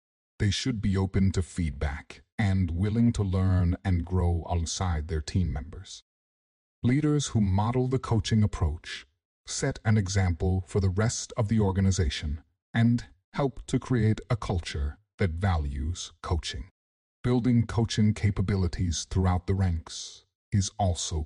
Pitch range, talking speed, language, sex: 85-110 Hz, 135 wpm, English, male